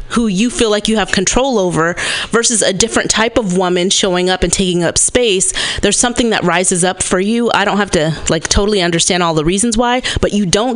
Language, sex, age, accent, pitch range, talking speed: English, female, 30-49, American, 185-235 Hz, 230 wpm